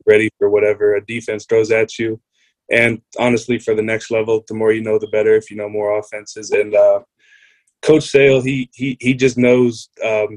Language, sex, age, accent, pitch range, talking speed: English, male, 20-39, American, 110-180 Hz, 205 wpm